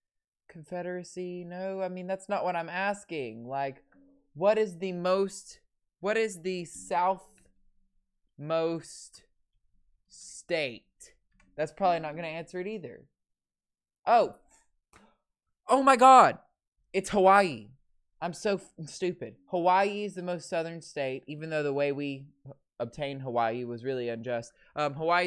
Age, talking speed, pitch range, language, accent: 20-39, 135 wpm, 120-185 Hz, English, American